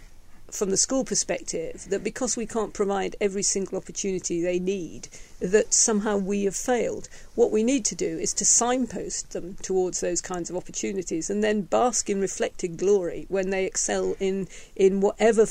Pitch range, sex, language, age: 190-235 Hz, female, English, 50-69